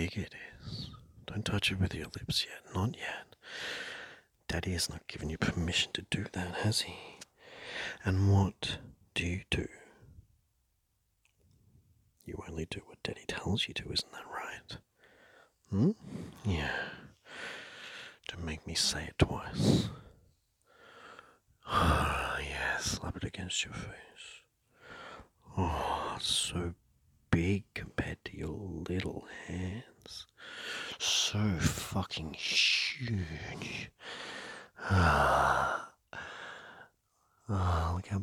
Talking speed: 110 wpm